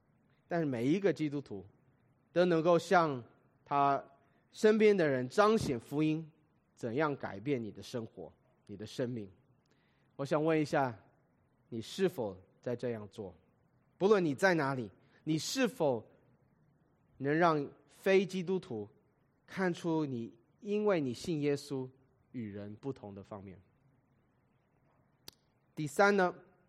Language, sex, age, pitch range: English, male, 30-49, 125-175 Hz